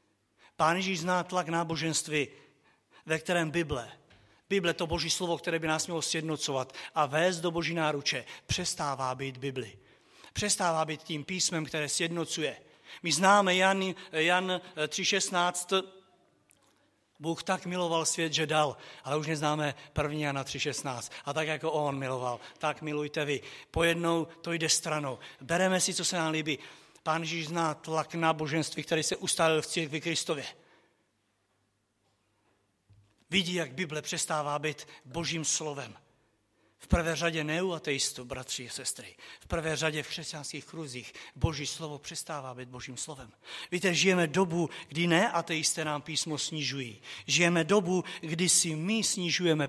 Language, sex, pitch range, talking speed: Czech, male, 145-175 Hz, 145 wpm